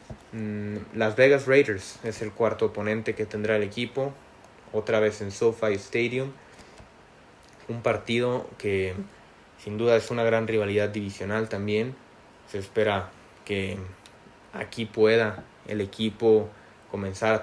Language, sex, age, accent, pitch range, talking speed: Spanish, male, 20-39, Mexican, 105-120 Hz, 125 wpm